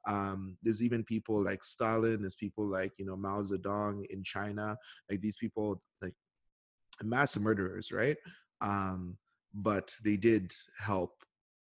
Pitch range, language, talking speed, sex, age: 95-110 Hz, English, 135 wpm, male, 20-39